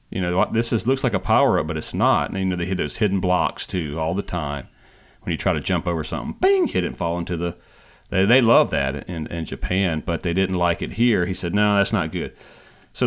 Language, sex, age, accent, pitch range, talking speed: English, male, 40-59, American, 80-95 Hz, 260 wpm